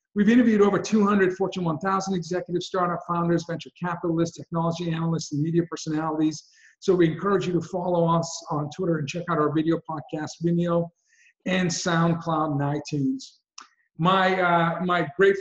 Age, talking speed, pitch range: 50-69, 150 wpm, 155-185 Hz